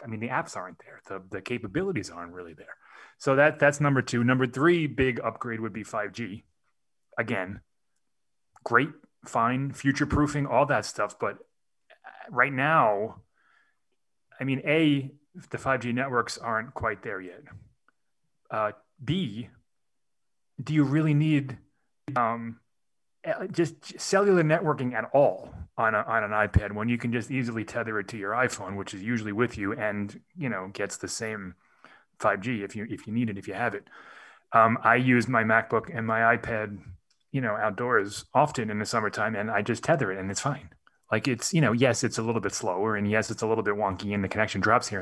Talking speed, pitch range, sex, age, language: 185 wpm, 105-140 Hz, male, 30-49, English